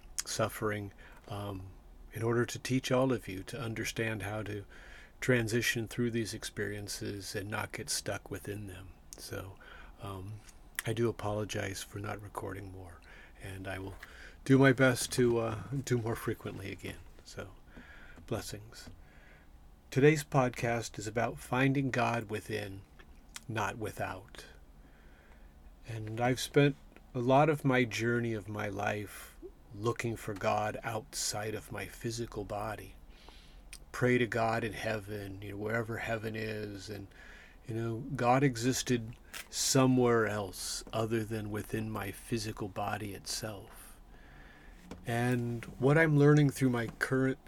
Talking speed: 135 wpm